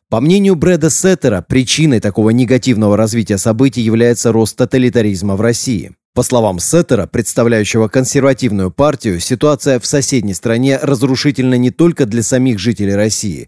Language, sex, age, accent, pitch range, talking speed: Russian, male, 30-49, native, 110-135 Hz, 140 wpm